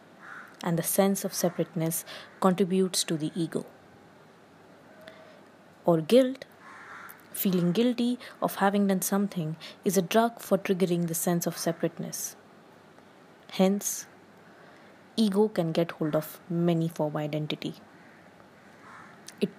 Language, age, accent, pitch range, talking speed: English, 20-39, Indian, 170-205 Hz, 110 wpm